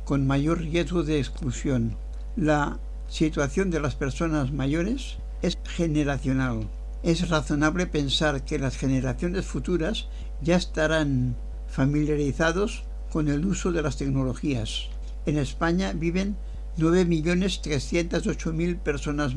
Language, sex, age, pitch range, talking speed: Spanish, male, 60-79, 135-170 Hz, 105 wpm